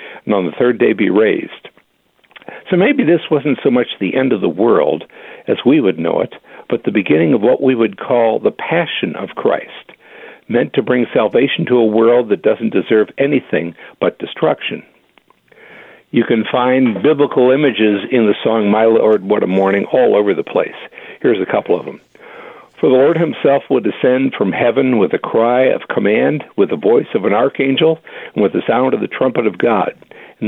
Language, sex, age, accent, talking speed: English, male, 60-79, American, 195 wpm